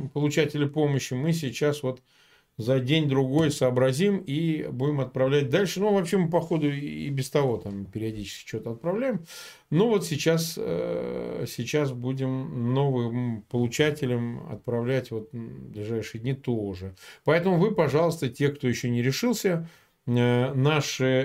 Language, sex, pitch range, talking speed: Russian, male, 120-160 Hz, 125 wpm